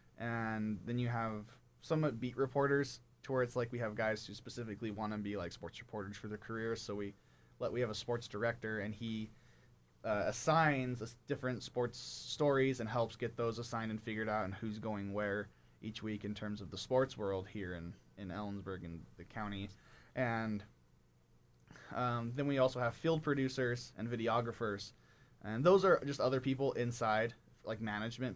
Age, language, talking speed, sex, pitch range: 20-39, English, 185 wpm, male, 105-125 Hz